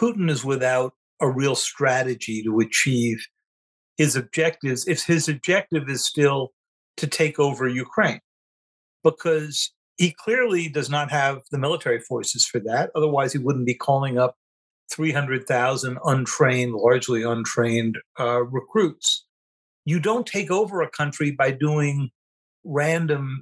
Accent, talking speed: American, 130 wpm